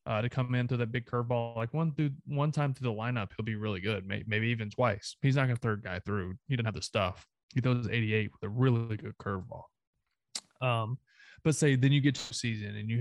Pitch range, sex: 110-130 Hz, male